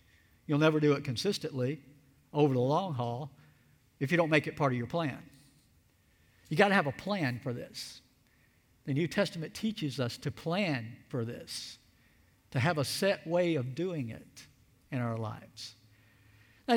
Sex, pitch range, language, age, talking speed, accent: male, 125-195 Hz, English, 50-69, 170 wpm, American